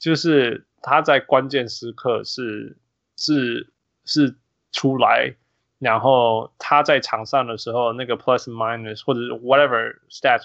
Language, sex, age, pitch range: Chinese, male, 20-39, 115-145 Hz